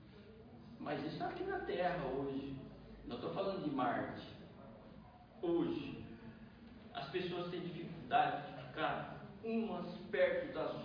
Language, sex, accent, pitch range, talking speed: Portuguese, male, Brazilian, 155-240 Hz, 115 wpm